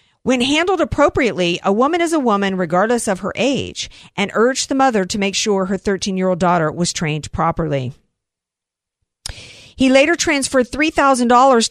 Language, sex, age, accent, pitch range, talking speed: English, female, 50-69, American, 185-255 Hz, 160 wpm